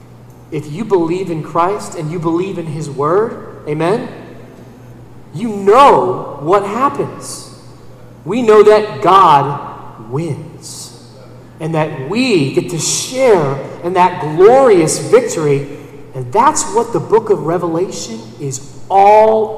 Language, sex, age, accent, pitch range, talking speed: English, male, 40-59, American, 130-175 Hz, 125 wpm